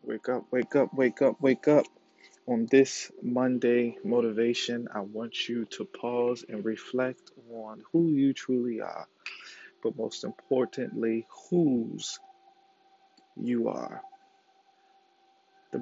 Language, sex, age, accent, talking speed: English, male, 20-39, American, 120 wpm